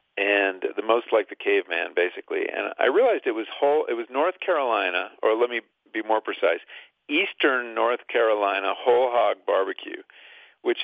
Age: 50-69